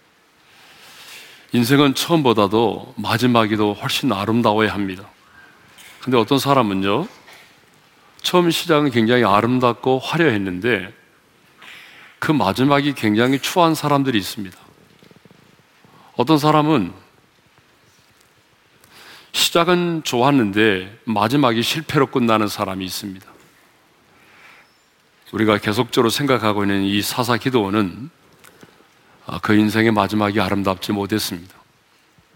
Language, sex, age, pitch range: Korean, male, 40-59, 100-135 Hz